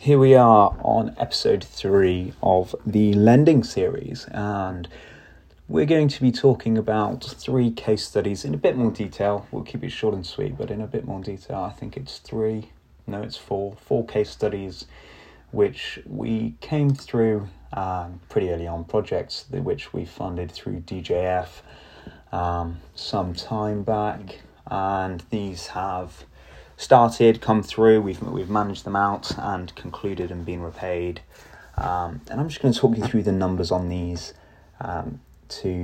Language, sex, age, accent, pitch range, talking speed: English, male, 20-39, British, 90-110 Hz, 160 wpm